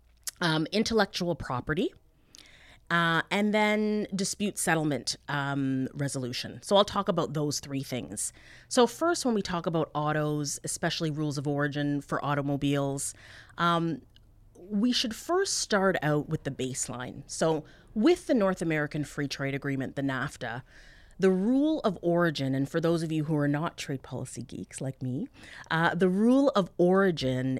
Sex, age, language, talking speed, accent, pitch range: female, 30-49, English, 155 wpm, American, 140-190 Hz